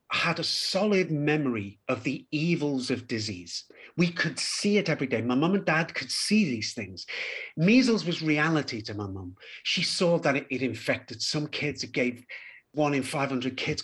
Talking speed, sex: 180 wpm, male